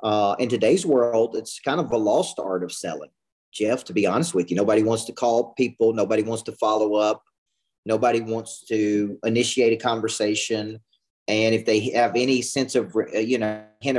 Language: English